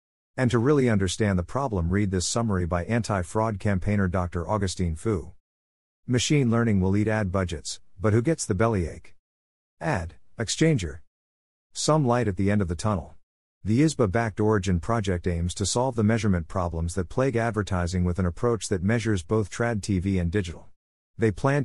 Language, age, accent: English, 50-69, American